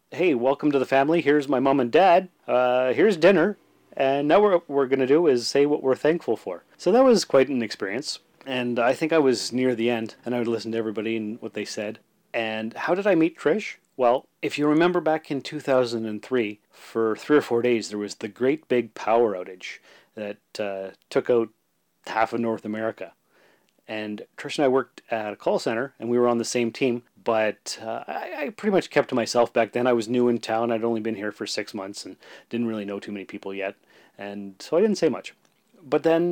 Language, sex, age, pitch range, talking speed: English, male, 30-49, 115-150 Hz, 230 wpm